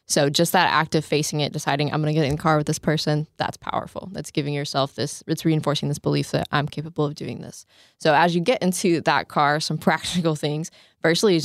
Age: 20-39